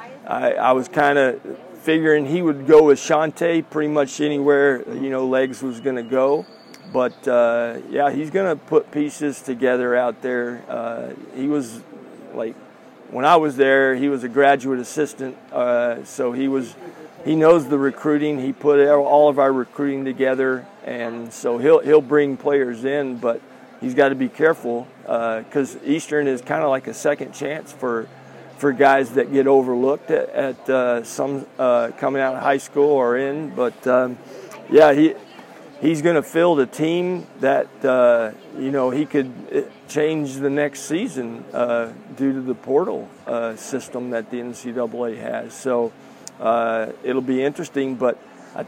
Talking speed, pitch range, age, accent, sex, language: 170 wpm, 125-150 Hz, 40-59, American, male, English